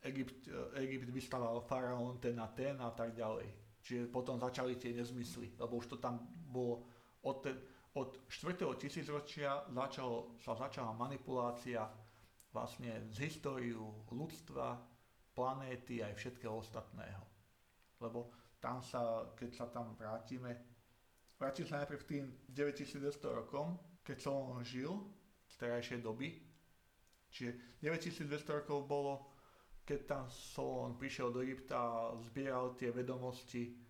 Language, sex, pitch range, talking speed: Slovak, male, 120-135 Hz, 120 wpm